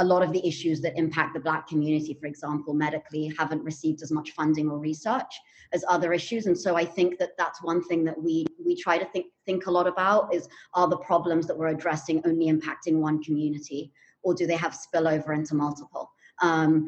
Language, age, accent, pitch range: English, 30-49, British, 160-185 Hz